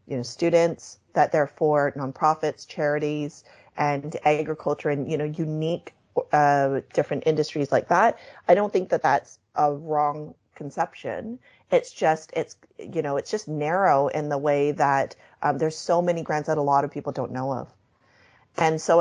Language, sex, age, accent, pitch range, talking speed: English, female, 30-49, American, 145-165 Hz, 170 wpm